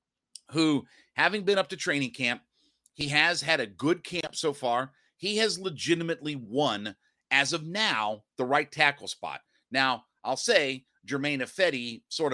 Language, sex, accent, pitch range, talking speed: English, male, American, 125-170 Hz, 155 wpm